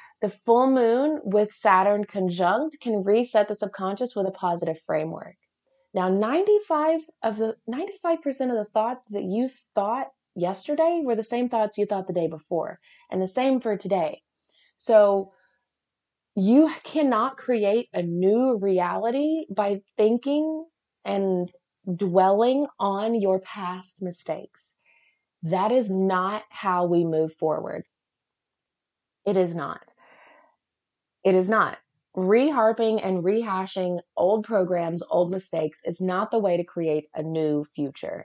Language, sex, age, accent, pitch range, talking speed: English, female, 20-39, American, 185-245 Hz, 130 wpm